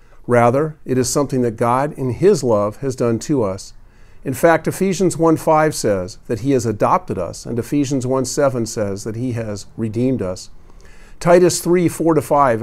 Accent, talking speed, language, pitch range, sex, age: American, 160 wpm, English, 110-155 Hz, male, 50-69